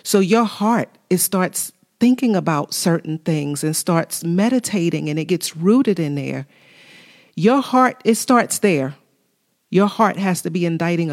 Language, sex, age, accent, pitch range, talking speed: English, female, 40-59, American, 165-210 Hz, 155 wpm